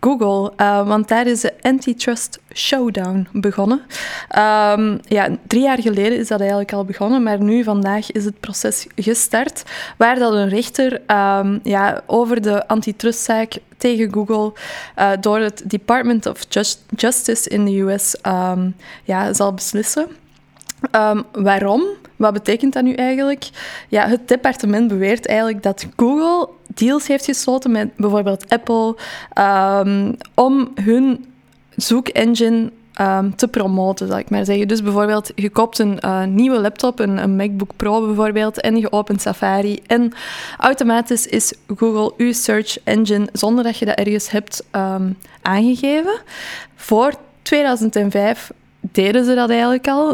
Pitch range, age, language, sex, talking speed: 200-240 Hz, 20-39, Dutch, female, 130 wpm